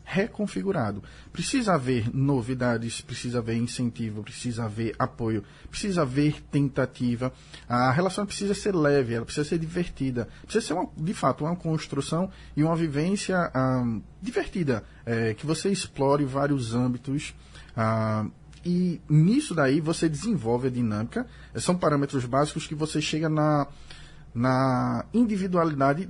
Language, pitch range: Portuguese, 125-170 Hz